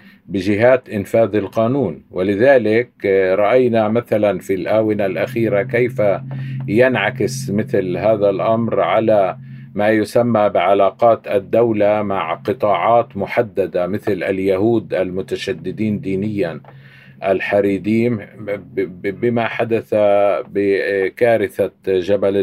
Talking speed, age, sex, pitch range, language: 85 wpm, 50-69, male, 100-115 Hz, Arabic